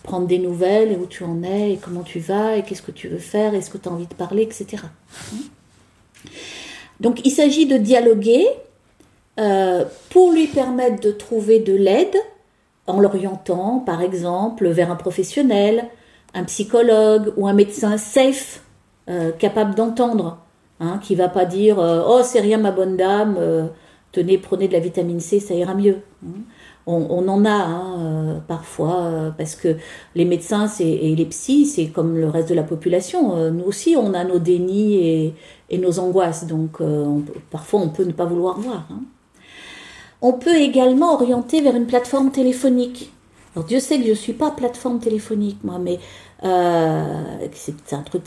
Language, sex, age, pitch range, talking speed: French, female, 40-59, 175-235 Hz, 180 wpm